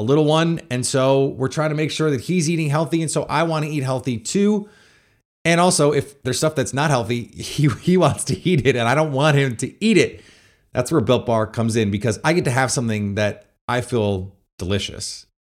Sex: male